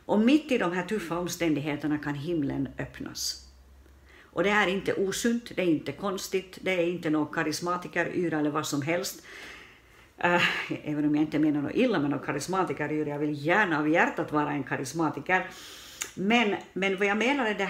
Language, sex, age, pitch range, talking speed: Swedish, female, 60-79, 145-185 Hz, 185 wpm